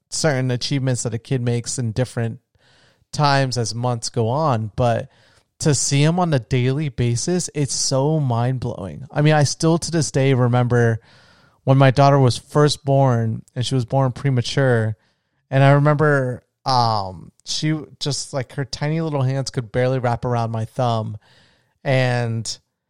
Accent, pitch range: American, 120-140 Hz